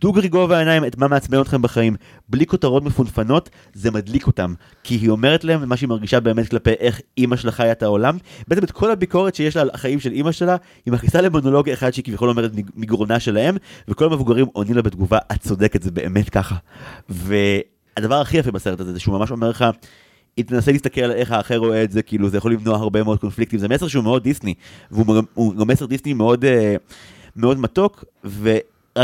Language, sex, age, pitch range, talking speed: Hebrew, male, 30-49, 110-135 Hz, 170 wpm